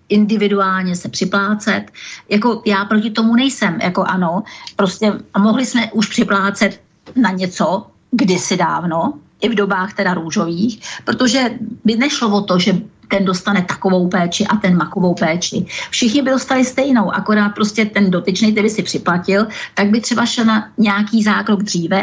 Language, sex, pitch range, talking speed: Czech, female, 200-230 Hz, 155 wpm